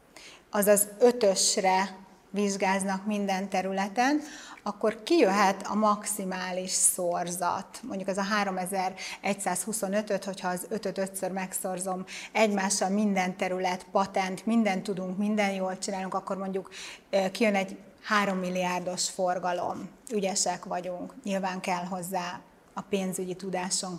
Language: Hungarian